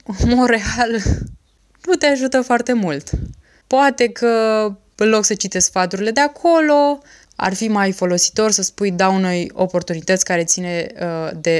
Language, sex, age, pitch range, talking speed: Romanian, female, 20-39, 165-215 Hz, 140 wpm